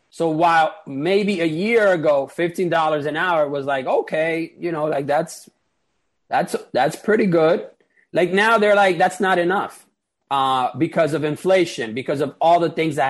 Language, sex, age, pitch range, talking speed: English, male, 30-49, 135-170 Hz, 170 wpm